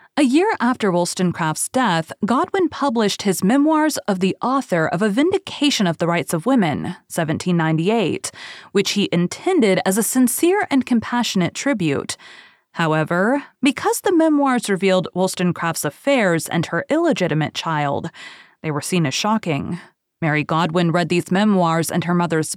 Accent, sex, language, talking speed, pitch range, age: American, female, English, 145 wpm, 170-255 Hz, 30-49